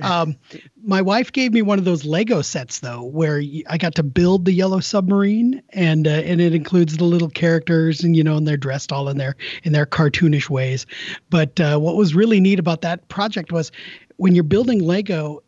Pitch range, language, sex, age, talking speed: 155-195 Hz, English, male, 40-59, 210 wpm